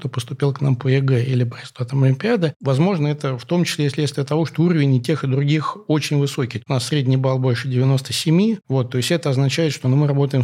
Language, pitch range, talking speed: Russian, 125-150 Hz, 235 wpm